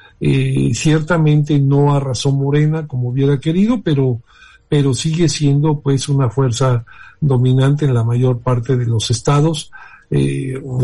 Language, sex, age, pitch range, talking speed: Spanish, male, 50-69, 125-150 Hz, 135 wpm